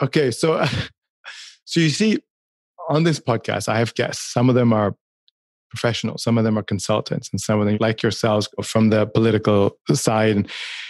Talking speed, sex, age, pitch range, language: 175 wpm, male, 30-49, 115-145 Hz, English